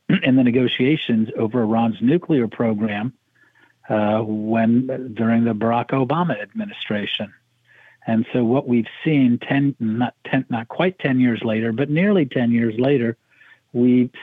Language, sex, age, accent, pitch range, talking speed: English, male, 50-69, American, 115-135 Hz, 140 wpm